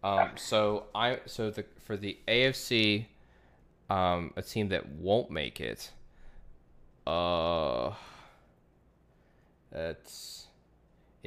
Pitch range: 80-95 Hz